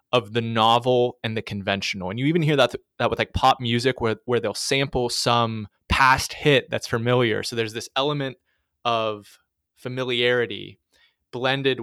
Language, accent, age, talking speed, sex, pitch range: English, American, 20-39, 170 wpm, male, 115-135 Hz